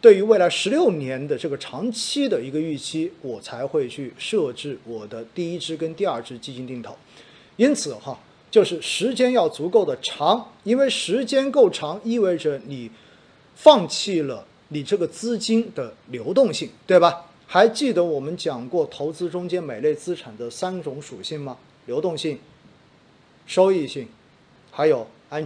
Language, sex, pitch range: Chinese, male, 140-215 Hz